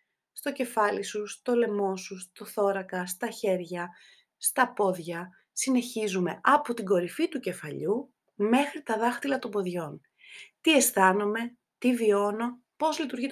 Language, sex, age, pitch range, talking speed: Greek, female, 30-49, 195-275 Hz, 130 wpm